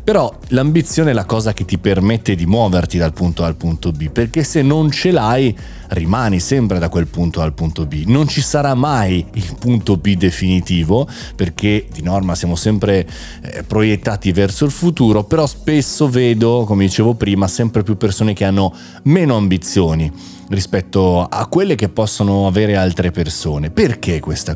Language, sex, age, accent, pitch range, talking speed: Italian, male, 30-49, native, 90-120 Hz, 175 wpm